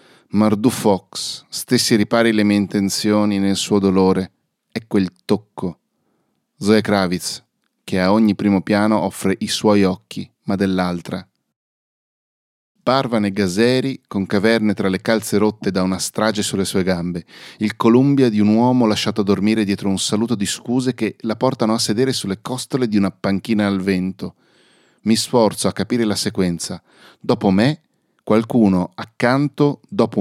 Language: Italian